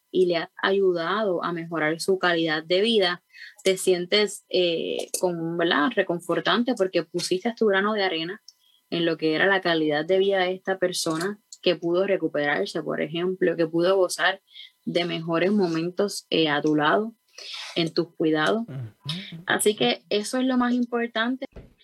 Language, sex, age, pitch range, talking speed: Spanish, female, 20-39, 170-205 Hz, 160 wpm